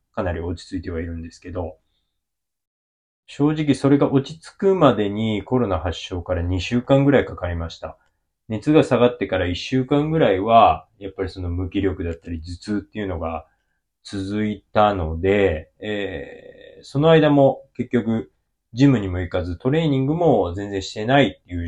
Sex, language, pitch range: male, Japanese, 90-130 Hz